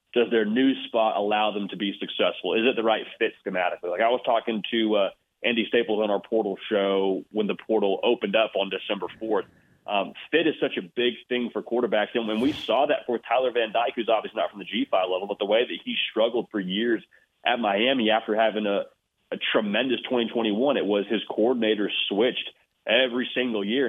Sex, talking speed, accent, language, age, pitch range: male, 210 wpm, American, English, 30-49, 105-120 Hz